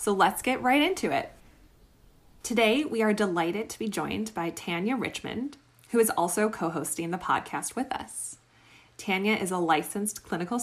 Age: 20-39